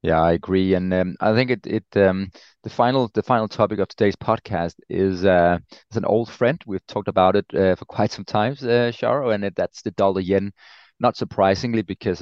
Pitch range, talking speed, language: 90-105 Hz, 215 wpm, English